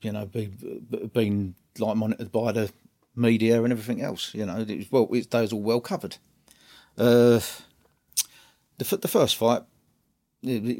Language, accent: English, British